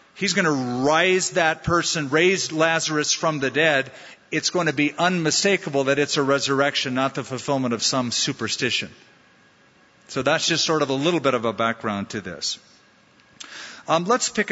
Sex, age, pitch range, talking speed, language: male, 50-69, 135-180 Hz, 175 wpm, English